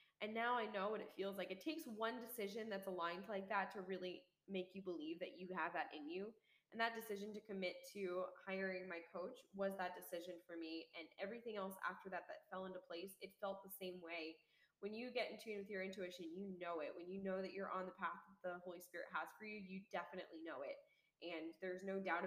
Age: 10-29